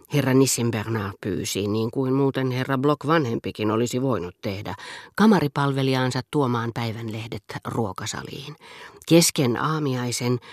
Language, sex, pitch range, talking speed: Finnish, female, 115-155 Hz, 105 wpm